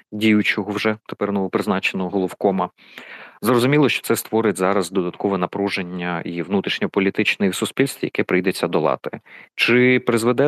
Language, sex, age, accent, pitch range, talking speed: Ukrainian, male, 30-49, native, 90-110 Hz, 115 wpm